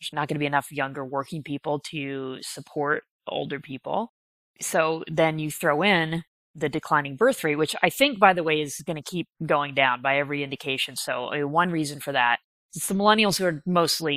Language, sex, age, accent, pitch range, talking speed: English, female, 20-39, American, 145-175 Hz, 205 wpm